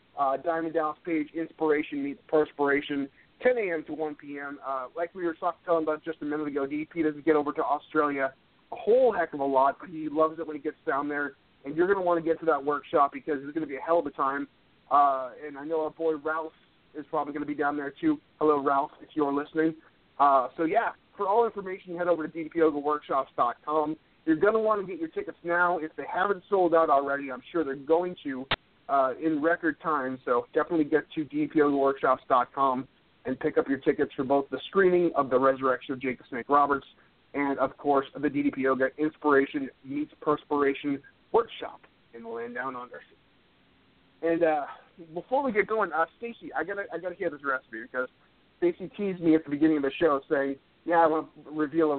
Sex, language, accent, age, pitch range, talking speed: male, English, American, 30-49, 140-165 Hz, 215 wpm